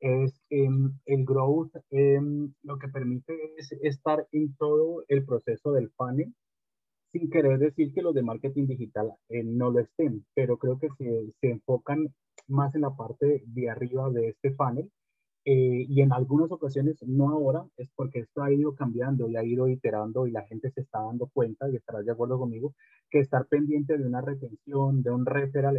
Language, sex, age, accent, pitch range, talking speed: Spanish, male, 30-49, Colombian, 125-145 Hz, 190 wpm